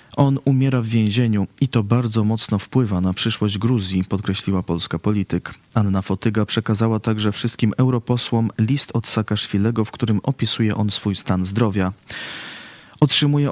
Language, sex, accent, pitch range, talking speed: Polish, male, native, 100-120 Hz, 140 wpm